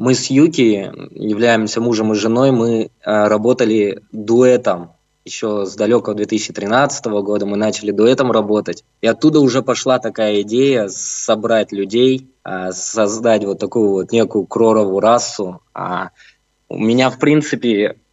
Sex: male